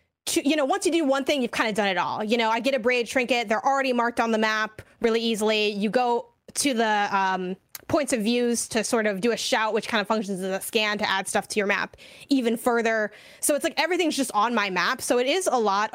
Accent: American